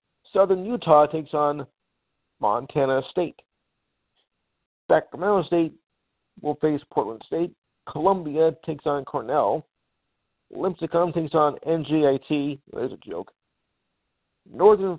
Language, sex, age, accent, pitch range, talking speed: English, male, 50-69, American, 150-185 Hz, 95 wpm